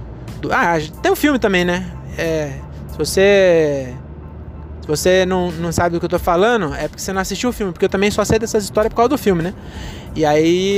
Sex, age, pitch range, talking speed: male, 20-39, 150-205 Hz, 225 wpm